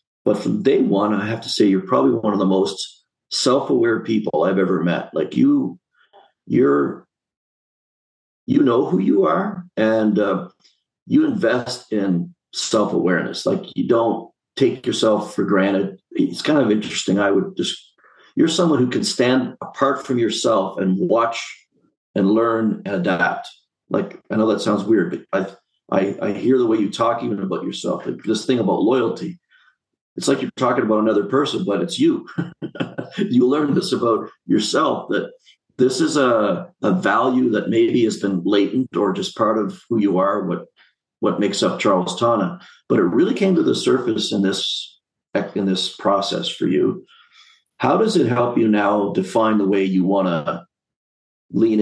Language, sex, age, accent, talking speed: English, male, 50-69, American, 175 wpm